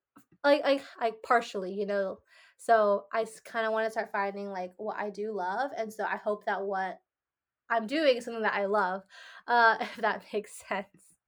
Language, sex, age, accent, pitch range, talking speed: English, female, 20-39, American, 200-240 Hz, 195 wpm